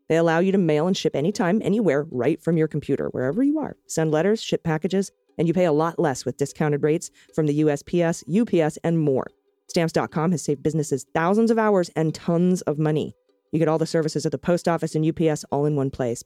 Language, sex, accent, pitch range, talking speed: English, female, American, 145-190 Hz, 225 wpm